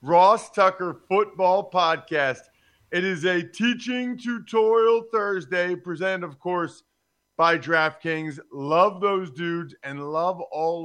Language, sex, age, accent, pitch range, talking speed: English, male, 40-59, American, 130-175 Hz, 115 wpm